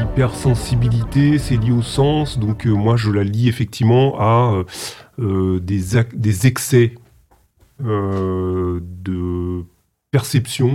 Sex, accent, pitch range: male, French, 95-120 Hz